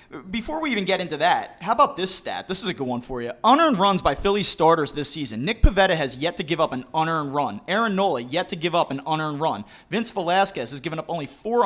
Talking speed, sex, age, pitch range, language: 255 wpm, male, 30-49, 150-195 Hz, English